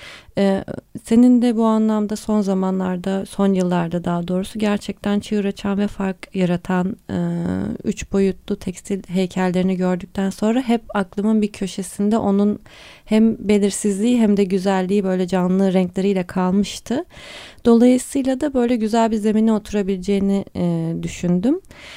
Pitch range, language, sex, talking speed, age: 185-225 Hz, Turkish, female, 120 wpm, 30-49